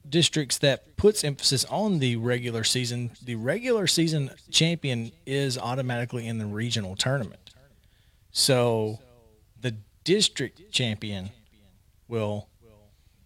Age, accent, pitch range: 40-59, American, 105-130 Hz